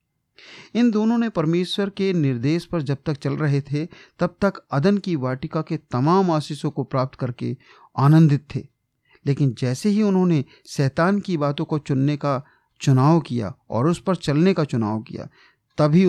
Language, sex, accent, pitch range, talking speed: Hindi, male, native, 130-170 Hz, 170 wpm